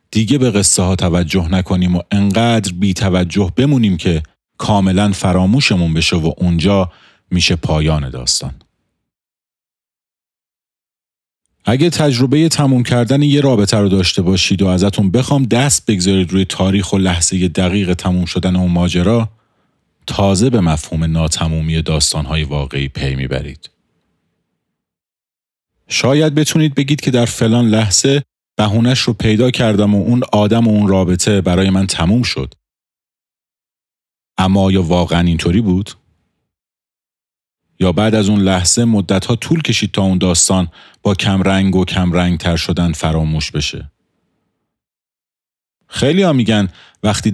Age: 40-59